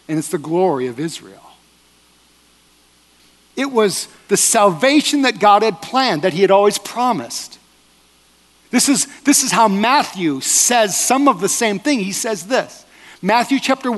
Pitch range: 195-270 Hz